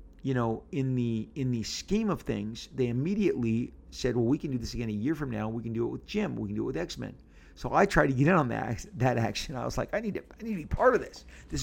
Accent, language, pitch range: American, English, 105-130 Hz